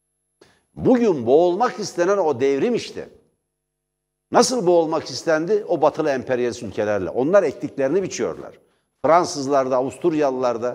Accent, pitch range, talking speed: native, 135-170 Hz, 100 wpm